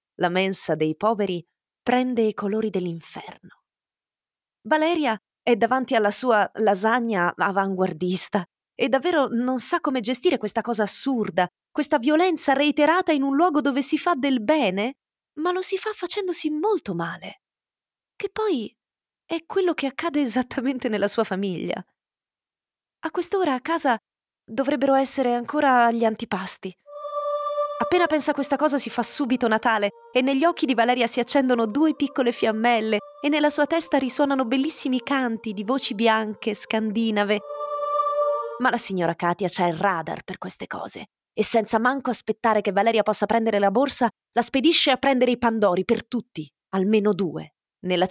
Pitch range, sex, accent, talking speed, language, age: 205-285 Hz, female, native, 150 wpm, Italian, 30-49